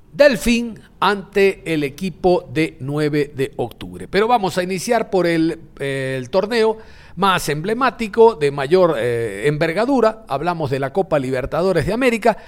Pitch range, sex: 145-205 Hz, male